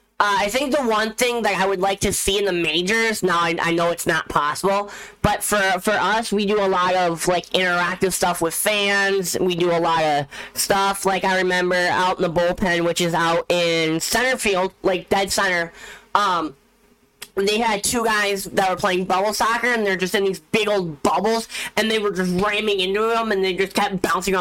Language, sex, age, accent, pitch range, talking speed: English, female, 10-29, American, 180-210 Hz, 210 wpm